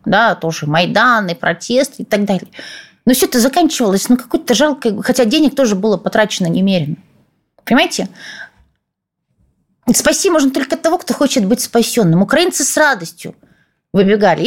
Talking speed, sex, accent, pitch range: 150 wpm, female, native, 195-260 Hz